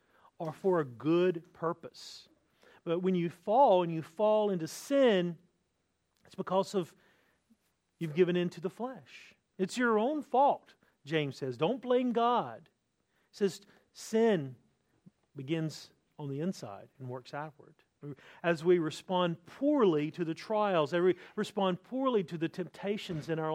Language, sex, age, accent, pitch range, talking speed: English, male, 40-59, American, 175-225 Hz, 150 wpm